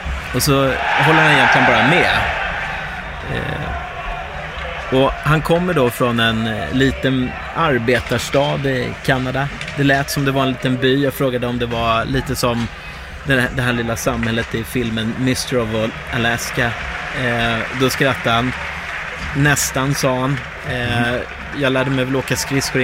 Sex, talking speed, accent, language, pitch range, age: male, 145 wpm, Swedish, English, 120-145 Hz, 30-49